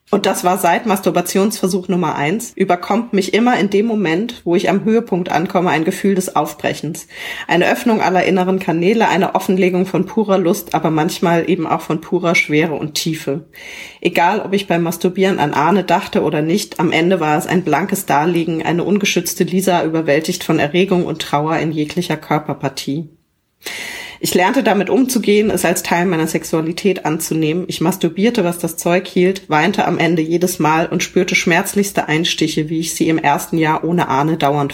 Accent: German